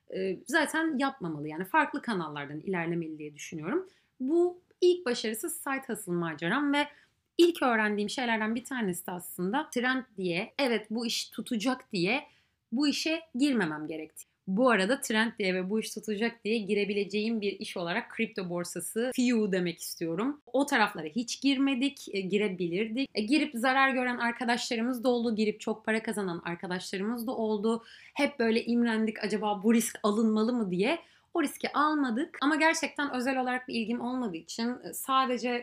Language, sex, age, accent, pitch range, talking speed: Turkish, female, 30-49, native, 195-265 Hz, 155 wpm